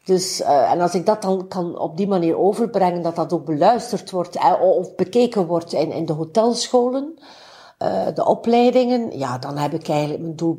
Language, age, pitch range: Dutch, 60-79, 160-215 Hz